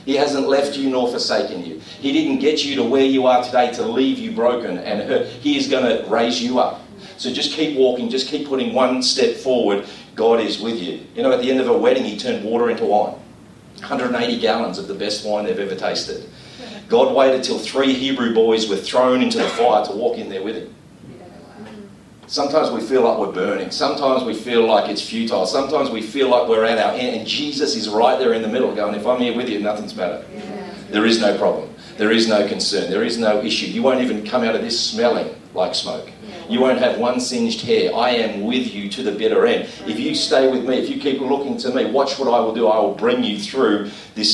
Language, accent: English, Australian